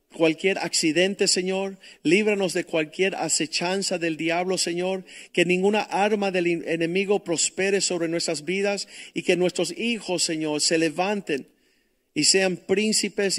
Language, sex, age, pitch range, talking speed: Spanish, male, 50-69, 155-185 Hz, 130 wpm